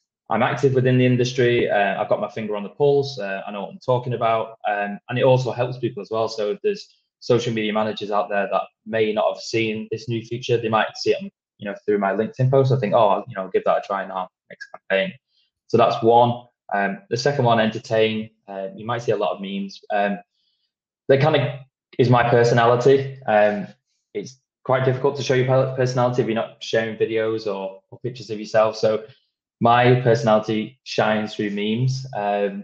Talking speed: 210 wpm